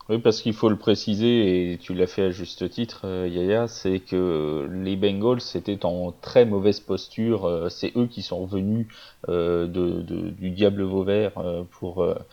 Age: 30-49